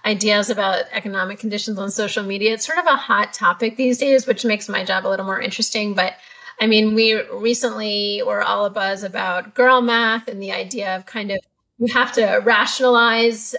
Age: 30-49